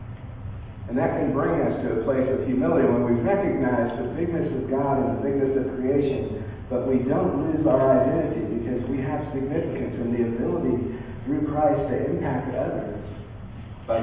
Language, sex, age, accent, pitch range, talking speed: English, male, 50-69, American, 110-140 Hz, 175 wpm